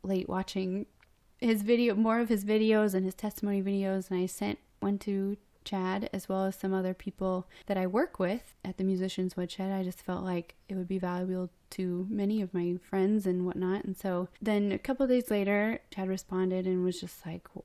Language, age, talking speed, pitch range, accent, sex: English, 20-39, 205 wpm, 185-210 Hz, American, female